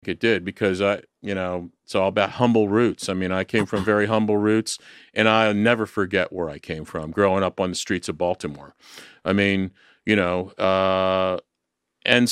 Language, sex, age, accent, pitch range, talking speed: English, male, 40-59, American, 95-110 Hz, 195 wpm